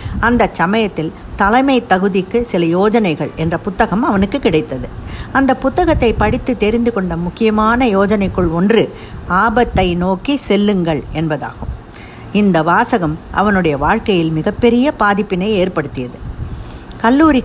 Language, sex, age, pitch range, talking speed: Tamil, female, 60-79, 175-230 Hz, 105 wpm